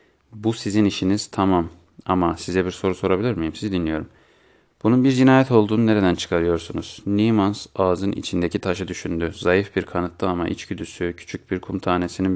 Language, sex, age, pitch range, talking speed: Turkish, male, 30-49, 85-95 Hz, 155 wpm